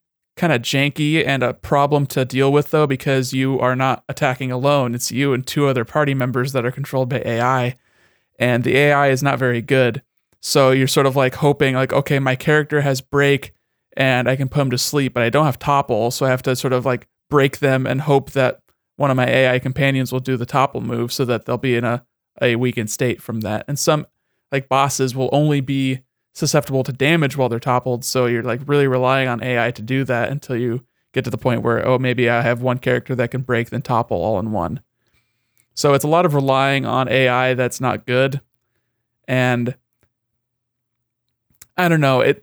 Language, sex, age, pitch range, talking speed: English, male, 30-49, 125-140 Hz, 215 wpm